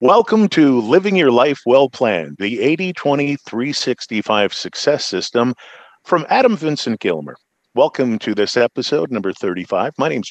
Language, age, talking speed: English, 40-59, 140 wpm